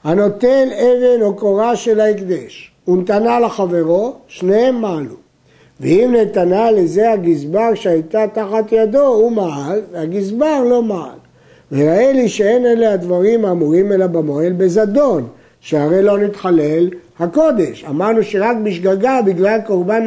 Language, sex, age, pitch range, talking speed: Hebrew, male, 60-79, 170-220 Hz, 120 wpm